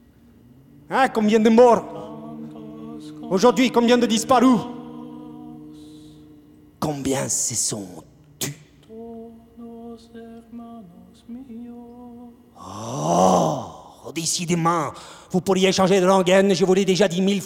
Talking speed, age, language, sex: 85 wpm, 40-59, French, male